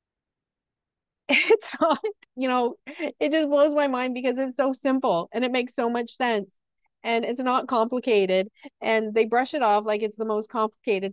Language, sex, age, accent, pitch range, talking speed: English, female, 30-49, American, 205-245 Hz, 180 wpm